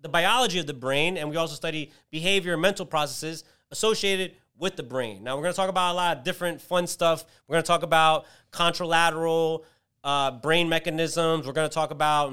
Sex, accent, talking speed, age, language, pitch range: male, American, 210 wpm, 30-49, English, 140-180 Hz